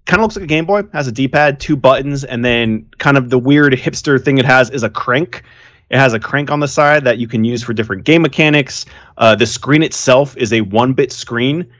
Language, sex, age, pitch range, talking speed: English, male, 20-39, 110-130 Hz, 245 wpm